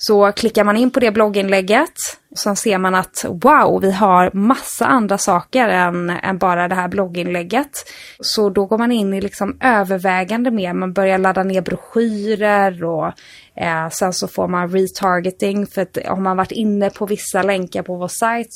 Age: 20-39